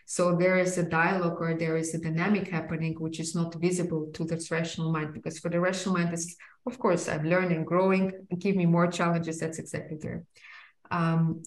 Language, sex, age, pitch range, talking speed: English, female, 20-39, 160-180 Hz, 200 wpm